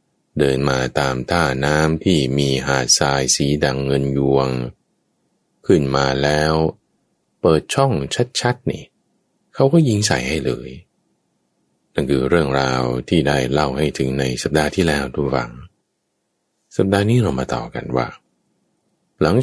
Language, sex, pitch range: English, male, 65-90 Hz